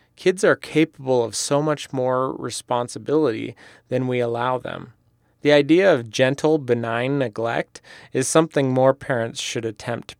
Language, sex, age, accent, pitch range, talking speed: English, male, 30-49, American, 120-150 Hz, 145 wpm